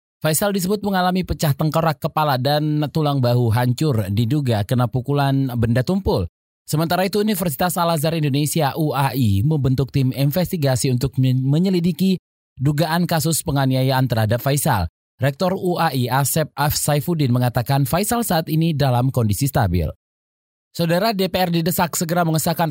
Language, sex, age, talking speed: Indonesian, male, 20-39, 125 wpm